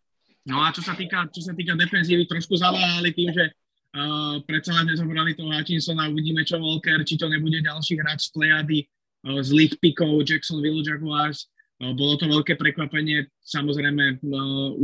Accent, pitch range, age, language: native, 145-160 Hz, 20-39, Czech